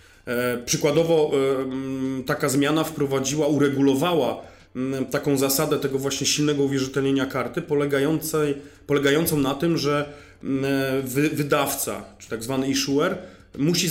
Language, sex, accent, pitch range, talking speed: Polish, male, native, 135-150 Hz, 95 wpm